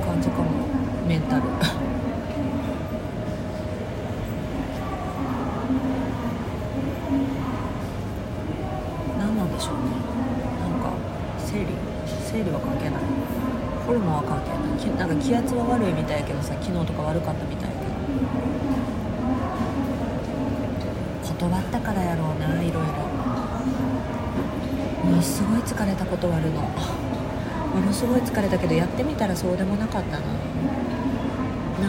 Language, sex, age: Japanese, female, 40-59